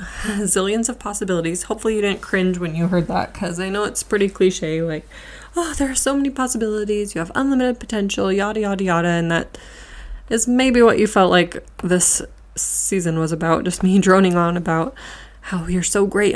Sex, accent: female, American